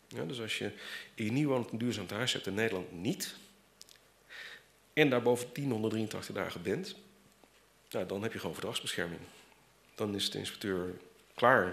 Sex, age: male, 40-59